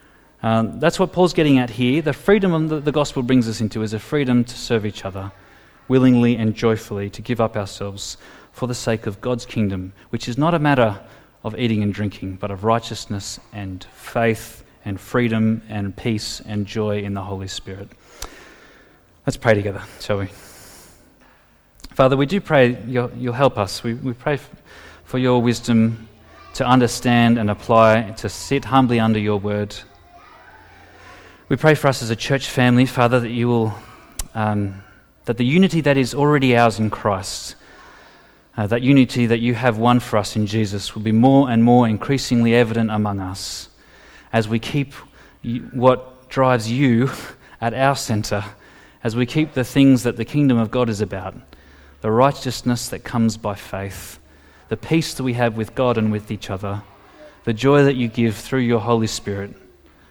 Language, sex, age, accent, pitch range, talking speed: English, male, 30-49, Australian, 105-125 Hz, 180 wpm